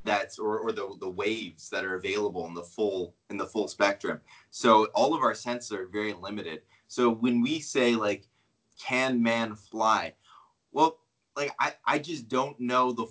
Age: 20-39